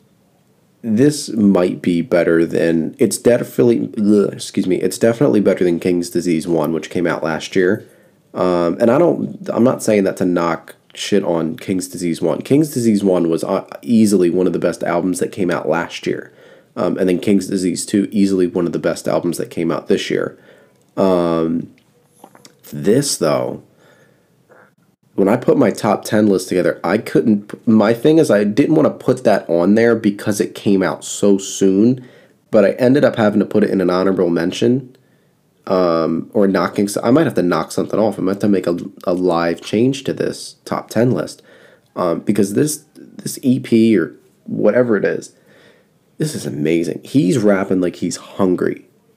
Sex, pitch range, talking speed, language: male, 85-105 Hz, 185 wpm, English